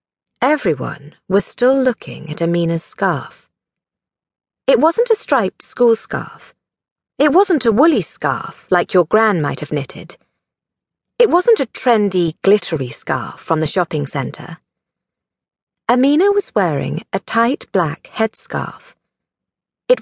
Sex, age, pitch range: female, 40-59, 165-255 Hz